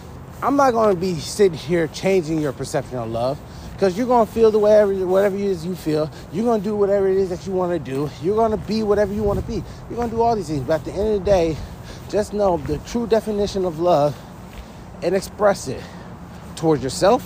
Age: 20-39